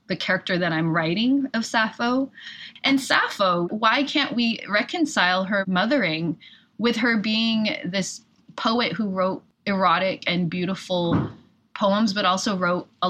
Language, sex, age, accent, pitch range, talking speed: English, female, 20-39, American, 170-210 Hz, 135 wpm